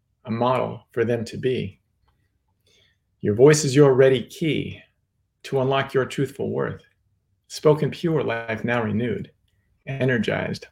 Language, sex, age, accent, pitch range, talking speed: English, male, 40-59, American, 105-145 Hz, 130 wpm